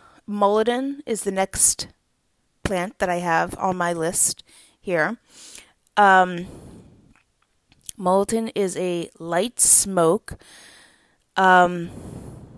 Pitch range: 175-210 Hz